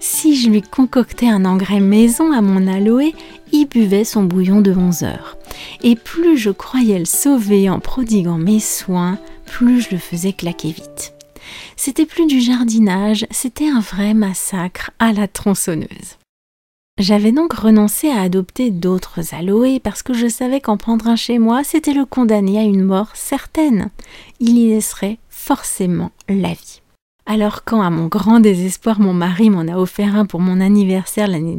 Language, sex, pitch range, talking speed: French, female, 185-245 Hz, 170 wpm